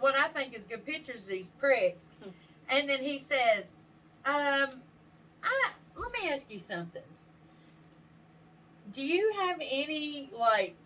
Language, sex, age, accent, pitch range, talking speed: English, female, 30-49, American, 220-290 Hz, 135 wpm